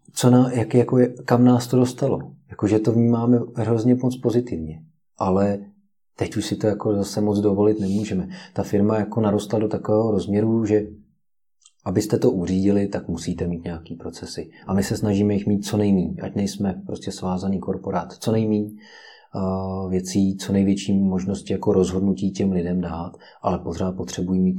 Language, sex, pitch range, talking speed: Czech, male, 90-110 Hz, 170 wpm